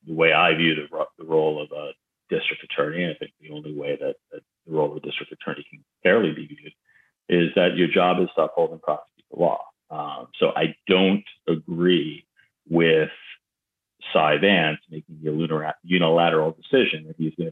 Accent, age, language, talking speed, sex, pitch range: American, 40-59, English, 190 wpm, male, 80-95 Hz